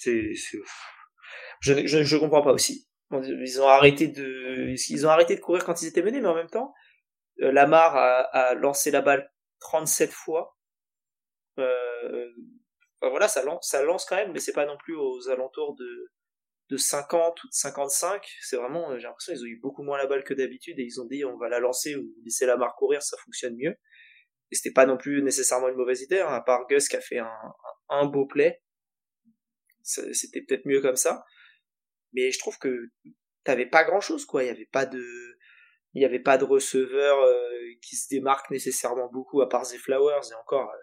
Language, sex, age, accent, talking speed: French, male, 20-39, French, 205 wpm